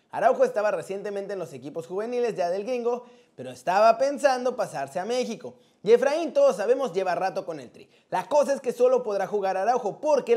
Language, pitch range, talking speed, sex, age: Spanish, 190-265 Hz, 195 wpm, male, 30-49